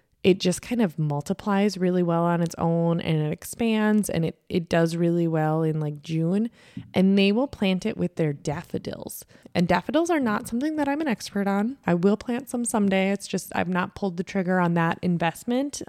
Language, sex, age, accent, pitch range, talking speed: English, female, 20-39, American, 165-205 Hz, 210 wpm